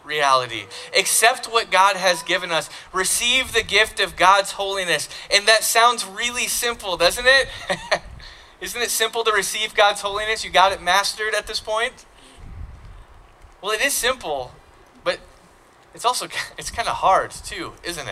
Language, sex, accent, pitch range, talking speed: English, male, American, 180-225 Hz, 155 wpm